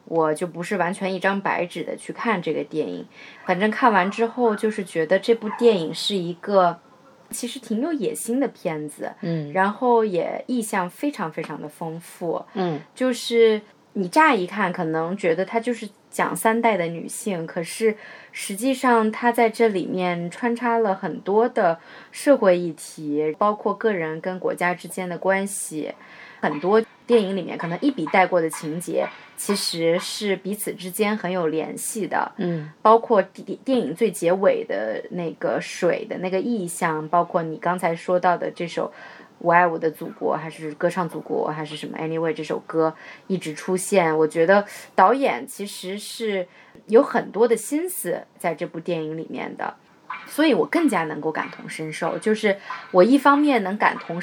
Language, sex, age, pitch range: Chinese, female, 20-39, 170-225 Hz